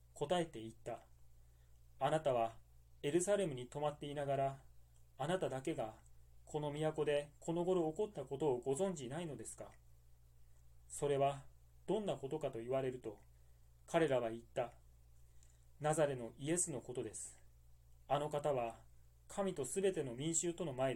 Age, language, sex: 30-49, Japanese, male